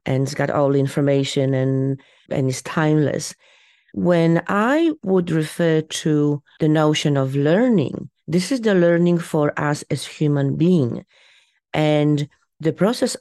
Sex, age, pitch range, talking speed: female, 40-59, 140-170 Hz, 140 wpm